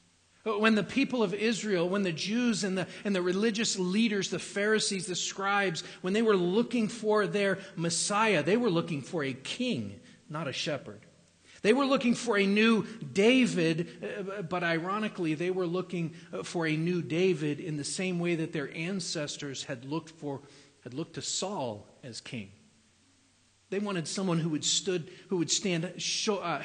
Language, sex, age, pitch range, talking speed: English, male, 40-59, 125-185 Hz, 175 wpm